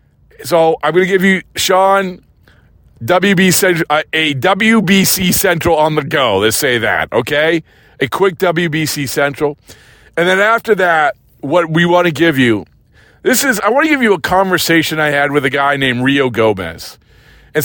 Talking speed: 170 wpm